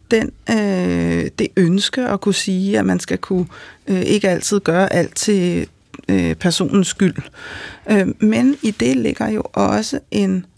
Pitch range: 205-275 Hz